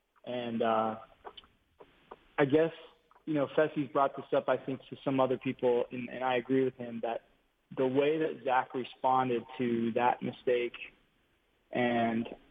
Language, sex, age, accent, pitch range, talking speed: English, male, 20-39, American, 120-130 Hz, 155 wpm